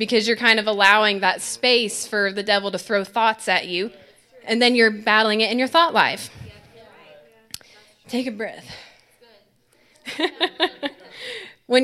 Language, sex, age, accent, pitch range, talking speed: English, female, 20-39, American, 205-245 Hz, 140 wpm